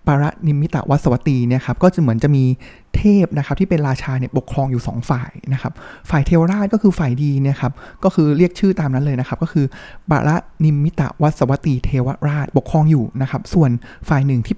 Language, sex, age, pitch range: Thai, male, 20-39, 130-165 Hz